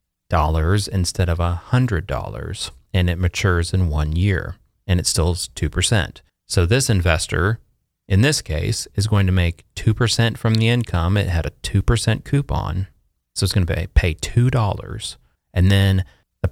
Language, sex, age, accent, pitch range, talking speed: English, male, 30-49, American, 85-110 Hz, 180 wpm